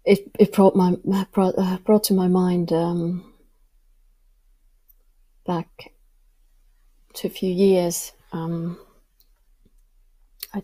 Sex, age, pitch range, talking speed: female, 30-49, 170-200 Hz, 90 wpm